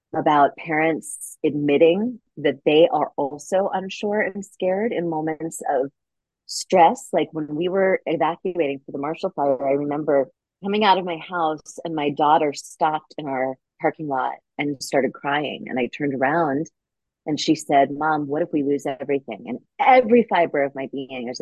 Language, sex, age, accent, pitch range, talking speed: English, female, 30-49, American, 140-165 Hz, 170 wpm